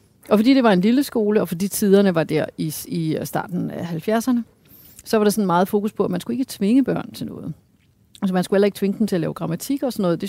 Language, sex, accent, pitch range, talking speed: Danish, female, native, 155-200 Hz, 270 wpm